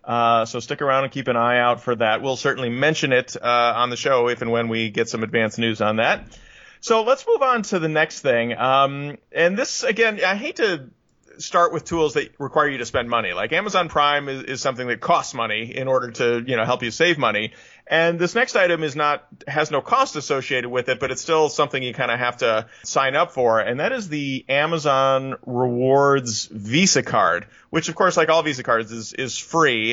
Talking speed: 225 wpm